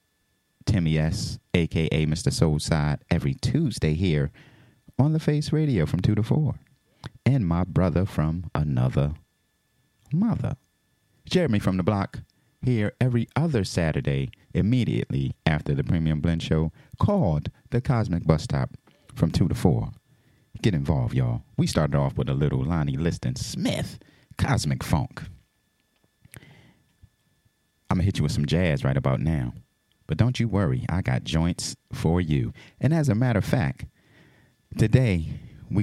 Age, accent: 30-49, American